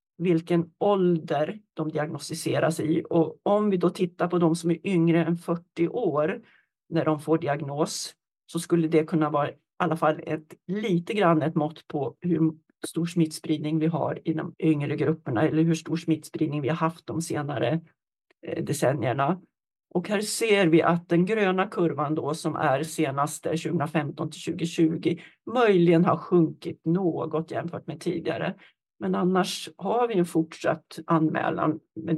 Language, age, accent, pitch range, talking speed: Swedish, 40-59, native, 160-180 Hz, 155 wpm